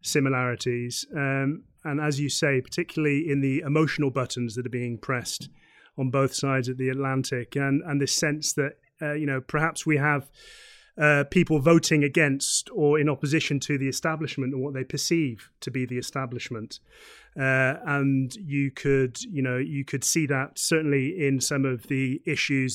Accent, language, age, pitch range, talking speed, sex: British, English, 30-49, 130-155 Hz, 175 wpm, male